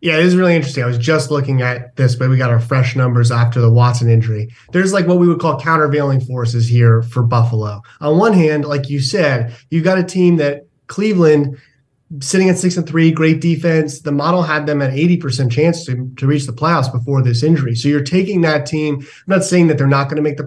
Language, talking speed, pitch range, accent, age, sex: English, 235 wpm, 130-170 Hz, American, 30-49, male